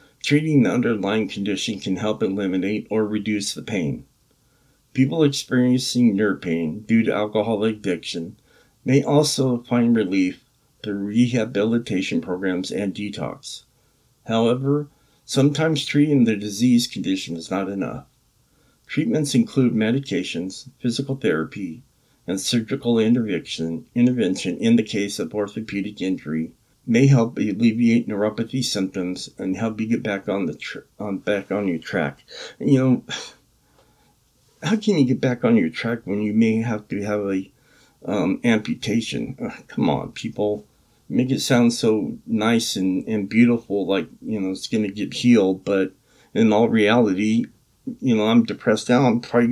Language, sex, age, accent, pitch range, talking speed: English, male, 50-69, American, 100-125 Hz, 145 wpm